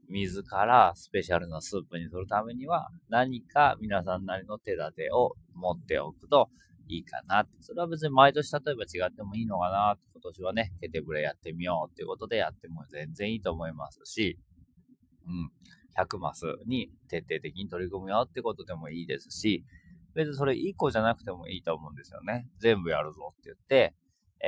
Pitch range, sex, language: 85-140 Hz, male, Japanese